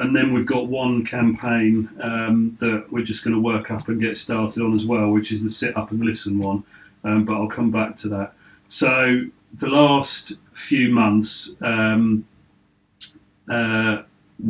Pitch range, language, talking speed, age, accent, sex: 105-115 Hz, English, 175 wpm, 40-59, British, male